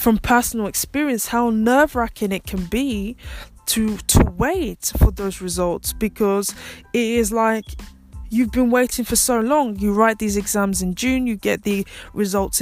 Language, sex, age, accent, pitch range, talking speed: English, female, 20-39, British, 190-235 Hz, 160 wpm